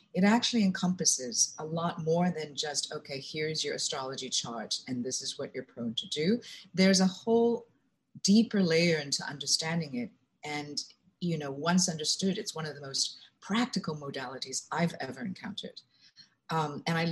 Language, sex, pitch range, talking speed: English, female, 145-185 Hz, 165 wpm